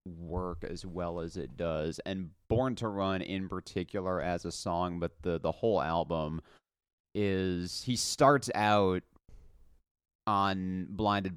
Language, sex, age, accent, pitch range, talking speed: English, male, 30-49, American, 85-100 Hz, 135 wpm